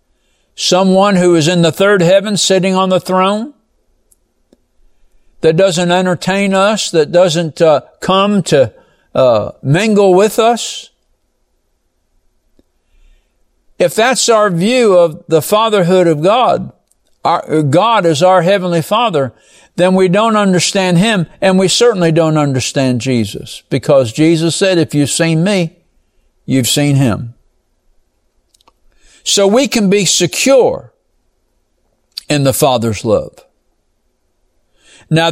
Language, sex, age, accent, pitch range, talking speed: English, male, 60-79, American, 165-205 Hz, 120 wpm